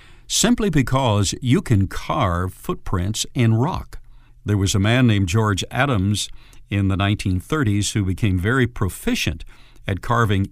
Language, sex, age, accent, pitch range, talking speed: English, male, 60-79, American, 100-125 Hz, 135 wpm